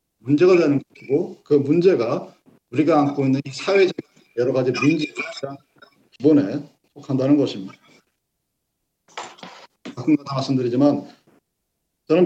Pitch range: 150-220 Hz